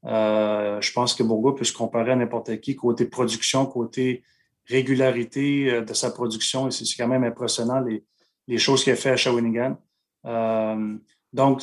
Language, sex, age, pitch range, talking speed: French, male, 30-49, 115-130 Hz, 170 wpm